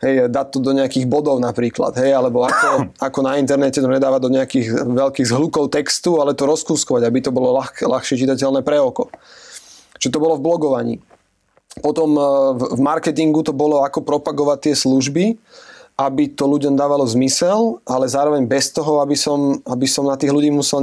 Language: Slovak